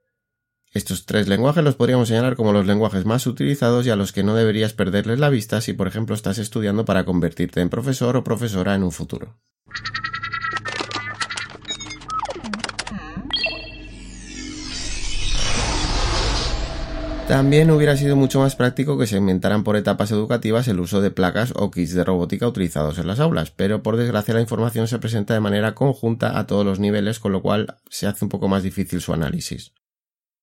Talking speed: 165 wpm